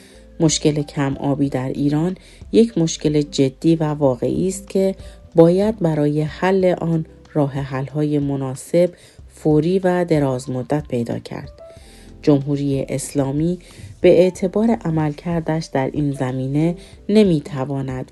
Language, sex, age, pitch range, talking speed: Persian, female, 40-59, 140-165 Hz, 115 wpm